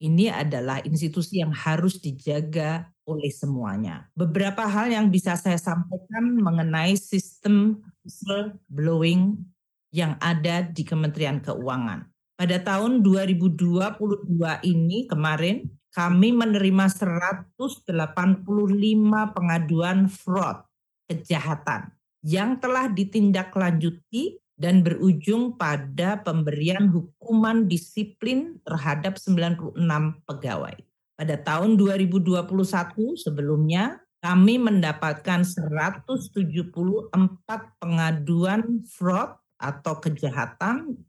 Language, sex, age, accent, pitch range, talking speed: Indonesian, female, 40-59, native, 160-200 Hz, 80 wpm